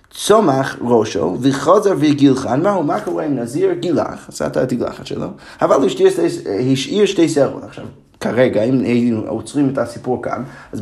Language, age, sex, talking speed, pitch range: Hebrew, 30-49, male, 150 wpm, 125-165 Hz